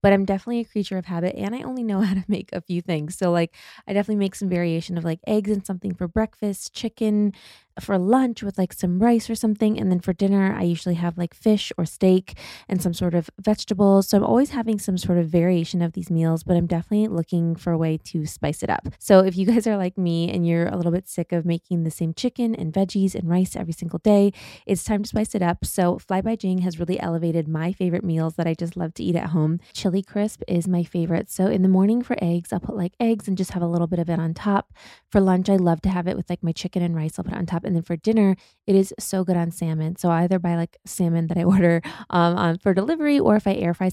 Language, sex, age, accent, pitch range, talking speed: English, female, 20-39, American, 170-200 Hz, 270 wpm